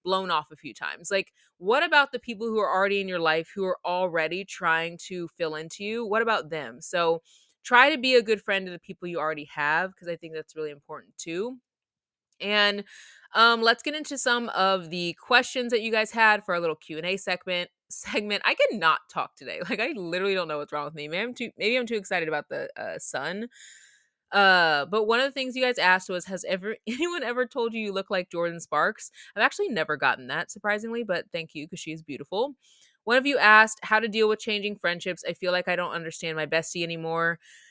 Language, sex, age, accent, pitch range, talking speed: English, female, 20-39, American, 165-220 Hz, 230 wpm